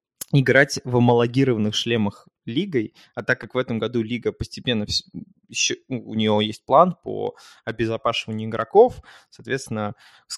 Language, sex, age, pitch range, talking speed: Russian, male, 20-39, 115-135 Hz, 125 wpm